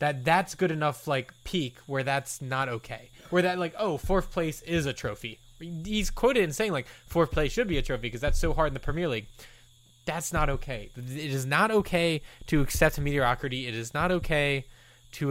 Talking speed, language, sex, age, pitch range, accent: 210 wpm, English, male, 20-39, 125-150 Hz, American